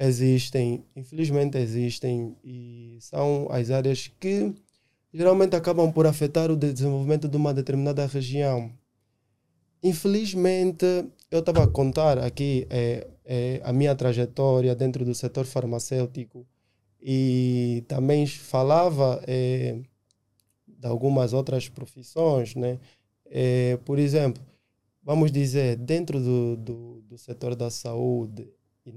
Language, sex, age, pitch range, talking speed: Portuguese, male, 20-39, 120-155 Hz, 115 wpm